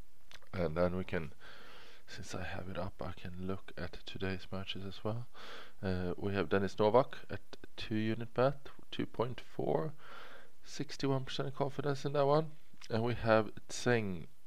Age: 20-39